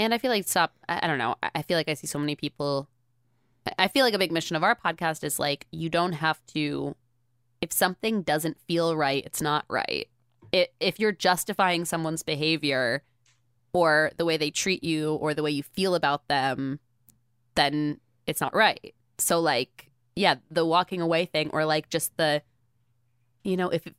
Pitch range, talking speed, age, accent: 135-165 Hz, 190 wpm, 20-39, American